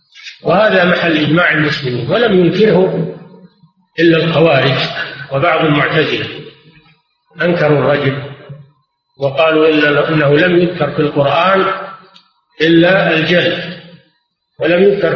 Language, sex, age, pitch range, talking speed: Arabic, male, 50-69, 150-180 Hz, 90 wpm